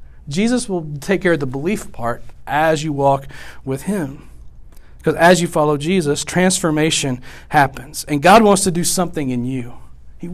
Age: 40-59